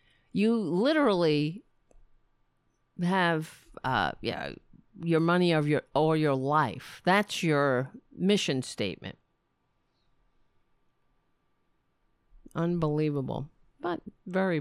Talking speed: 80 wpm